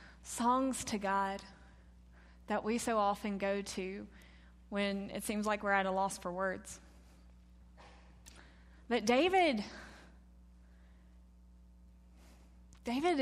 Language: English